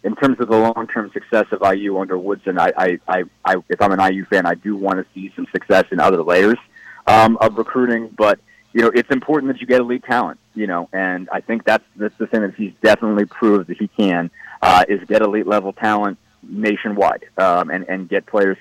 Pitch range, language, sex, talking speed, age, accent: 95-110 Hz, English, male, 225 wpm, 30-49, American